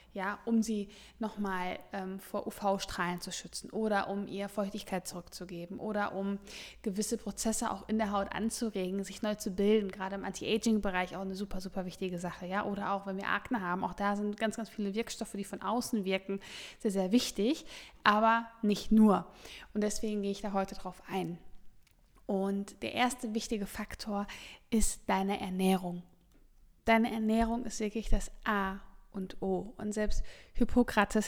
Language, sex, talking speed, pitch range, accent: German, female, 165 wpm, 195-220 Hz, German